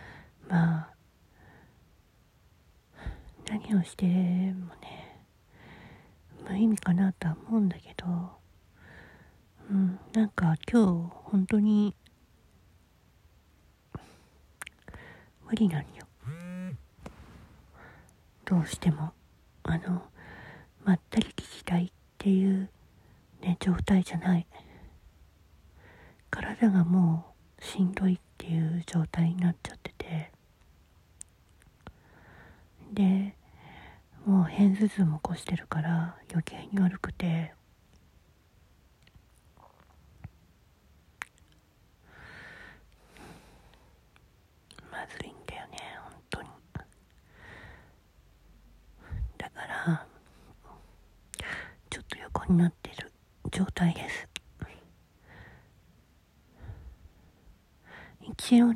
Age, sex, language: 40-59, female, Japanese